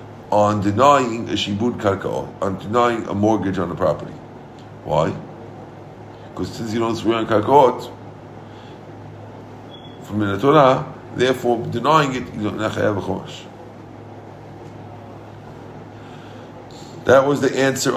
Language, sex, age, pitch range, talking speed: English, male, 50-69, 110-130 Hz, 115 wpm